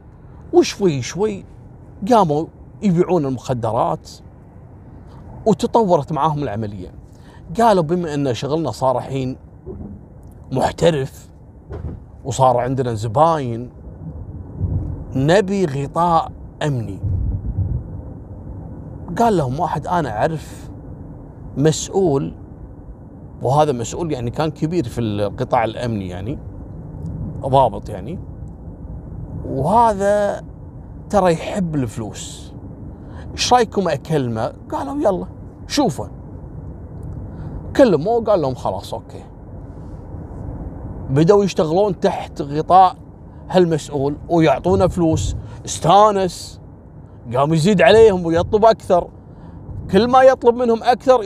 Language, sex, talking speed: Arabic, male, 85 wpm